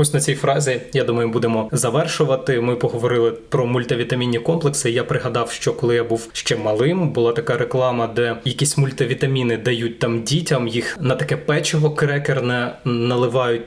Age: 20-39